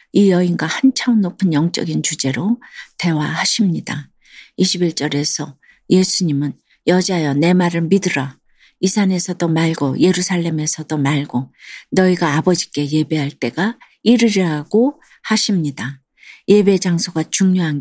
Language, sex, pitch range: Korean, female, 155-195 Hz